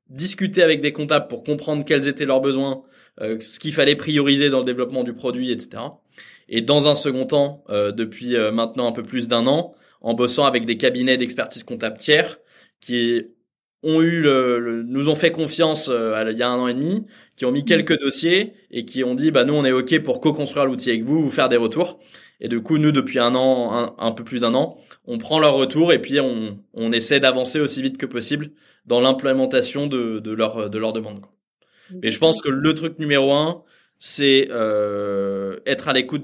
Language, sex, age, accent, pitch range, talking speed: French, male, 20-39, French, 120-150 Hz, 215 wpm